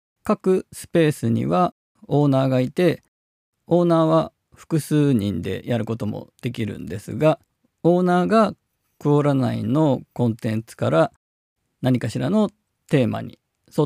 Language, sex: Japanese, male